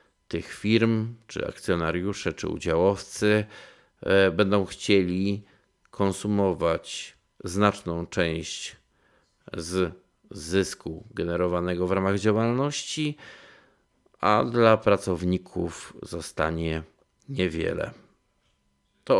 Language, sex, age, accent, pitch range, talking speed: Polish, male, 50-69, native, 85-100 Hz, 70 wpm